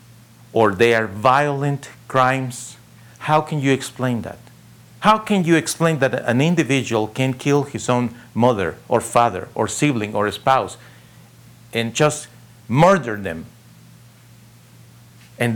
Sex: male